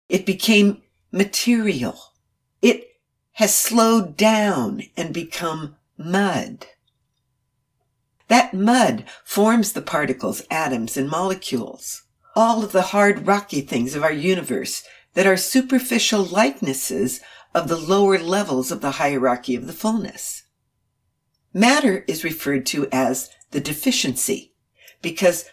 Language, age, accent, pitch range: English, 60-79, American, 160-225 Hz